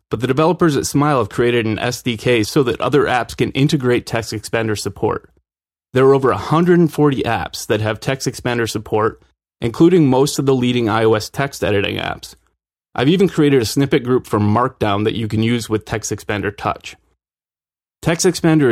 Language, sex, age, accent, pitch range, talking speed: English, male, 30-49, American, 110-140 Hz, 165 wpm